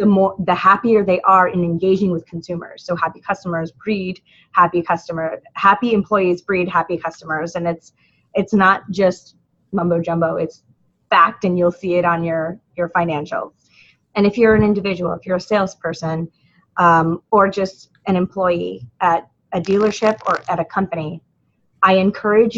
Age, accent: 20-39, American